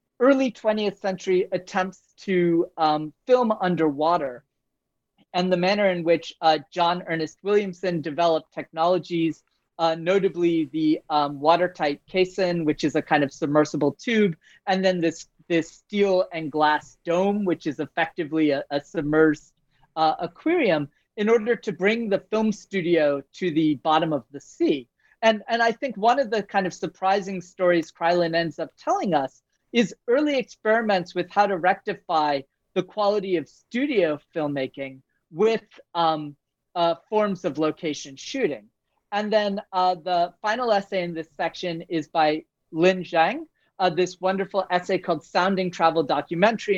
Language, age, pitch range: English, 30-49, 155-195 Hz